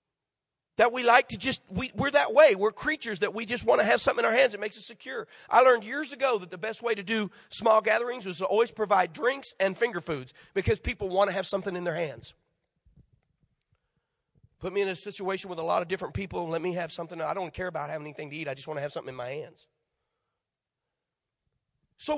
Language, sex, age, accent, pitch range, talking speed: English, male, 40-59, American, 210-290 Hz, 235 wpm